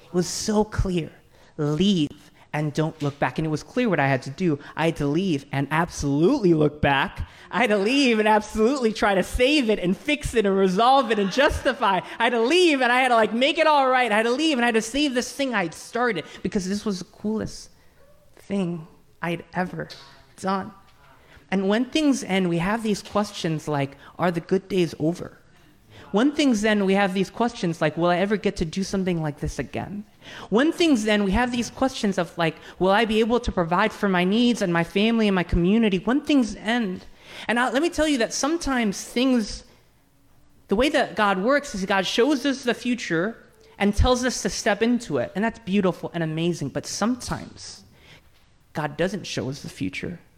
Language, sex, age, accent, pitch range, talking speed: English, male, 20-39, American, 165-230 Hz, 210 wpm